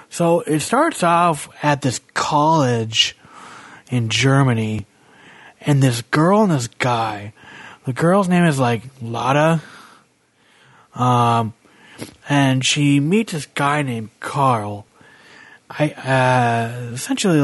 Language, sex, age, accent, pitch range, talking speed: English, male, 30-49, American, 115-145 Hz, 110 wpm